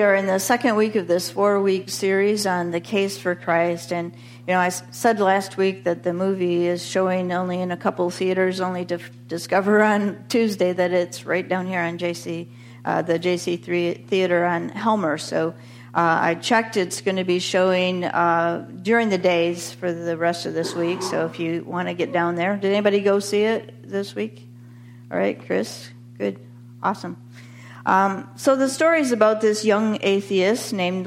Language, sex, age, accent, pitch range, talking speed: English, female, 50-69, American, 170-205 Hz, 195 wpm